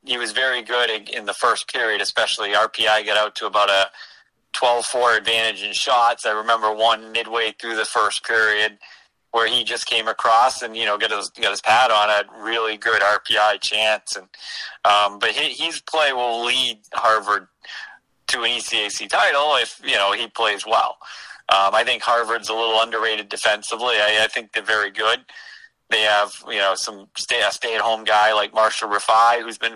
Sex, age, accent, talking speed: male, 30-49, American, 190 wpm